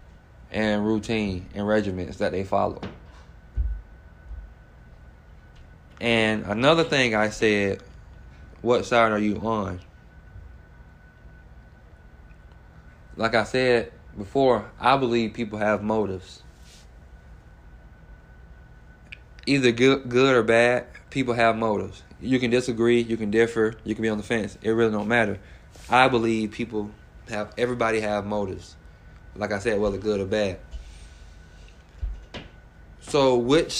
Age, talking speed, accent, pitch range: 20-39, 115 wpm, American, 80-115 Hz